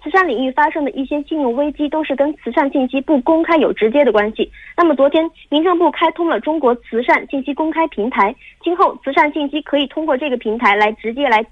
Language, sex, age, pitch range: Korean, female, 30-49, 245-320 Hz